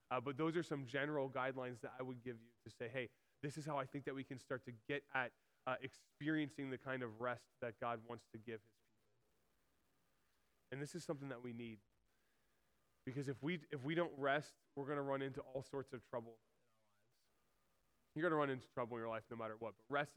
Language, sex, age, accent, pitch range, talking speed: English, male, 20-39, American, 120-145 Hz, 230 wpm